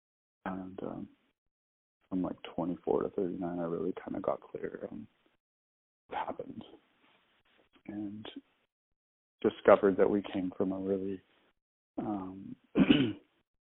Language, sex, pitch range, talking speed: English, male, 95-110 Hz, 110 wpm